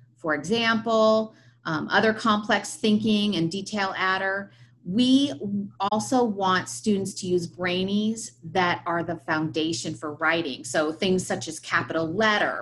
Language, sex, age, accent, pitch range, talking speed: English, female, 30-49, American, 160-205 Hz, 135 wpm